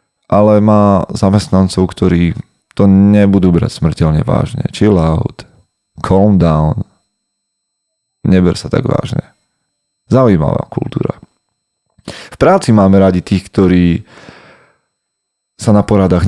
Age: 30-49